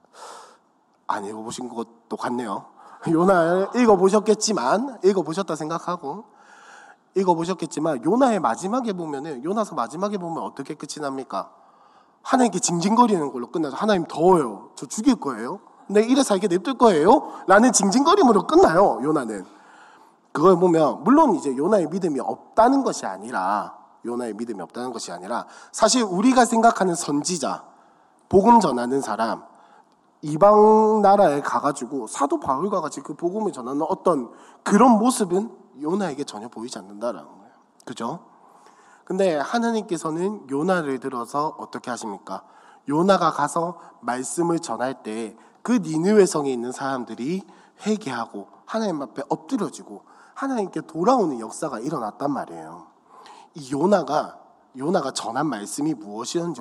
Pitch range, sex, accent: 145-215 Hz, male, native